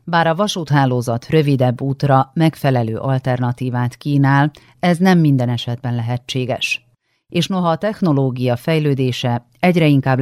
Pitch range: 120-150 Hz